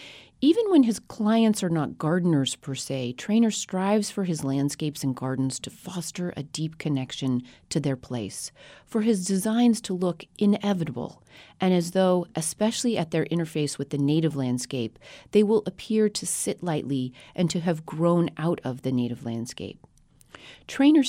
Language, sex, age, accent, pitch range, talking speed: English, female, 40-59, American, 140-200 Hz, 160 wpm